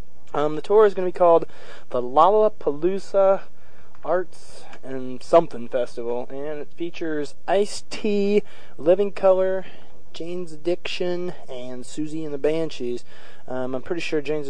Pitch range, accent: 125-160 Hz, American